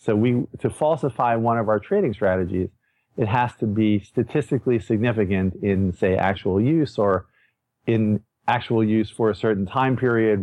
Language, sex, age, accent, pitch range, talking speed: English, male, 50-69, American, 100-120 Hz, 160 wpm